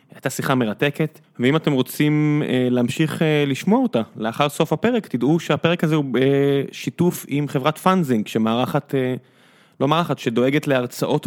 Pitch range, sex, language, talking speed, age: 120-155 Hz, male, Hebrew, 135 wpm, 20-39